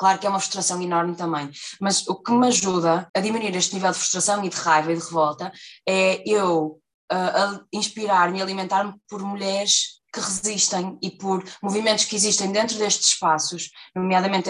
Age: 20-39